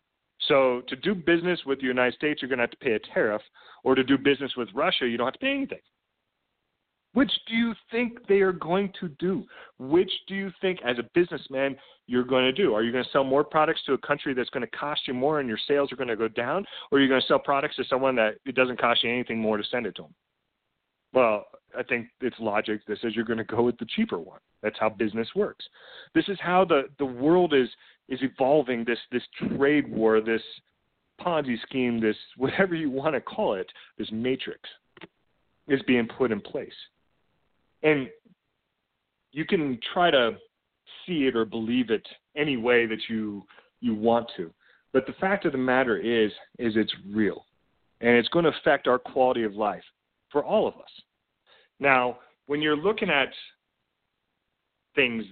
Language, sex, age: English, male, 40-59